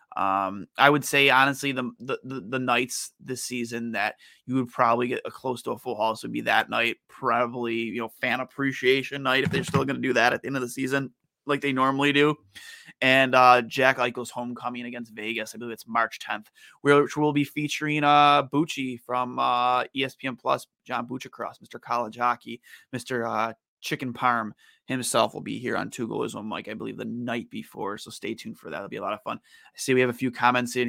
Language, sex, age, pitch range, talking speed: English, male, 20-39, 115-130 Hz, 215 wpm